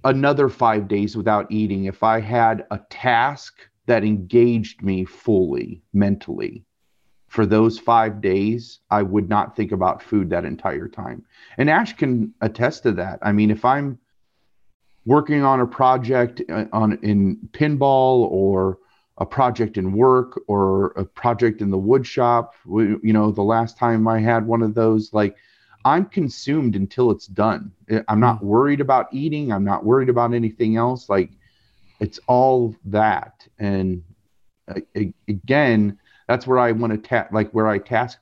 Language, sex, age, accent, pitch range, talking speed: English, male, 40-59, American, 100-120 Hz, 155 wpm